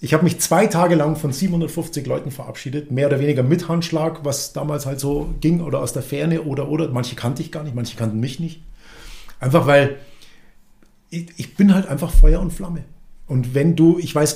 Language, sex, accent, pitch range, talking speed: German, male, German, 135-175 Hz, 210 wpm